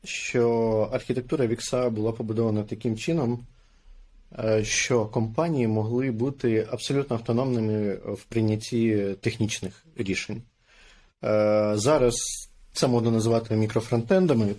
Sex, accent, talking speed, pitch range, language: male, native, 90 wpm, 110-125 Hz, Ukrainian